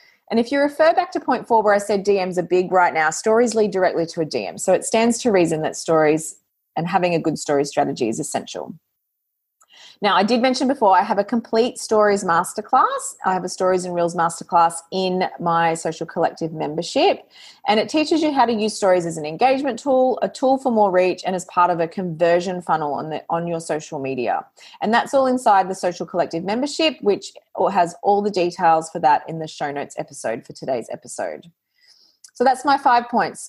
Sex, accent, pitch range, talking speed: female, Australian, 175-240 Hz, 210 wpm